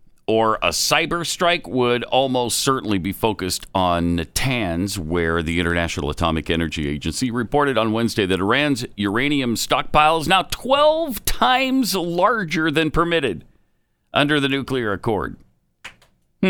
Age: 50-69